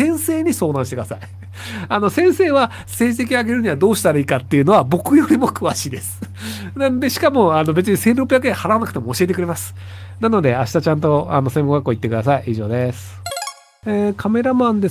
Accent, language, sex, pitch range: native, Japanese, male, 135-215 Hz